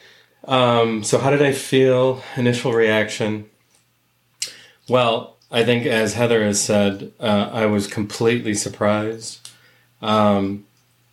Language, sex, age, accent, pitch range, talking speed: English, male, 30-49, American, 105-115 Hz, 115 wpm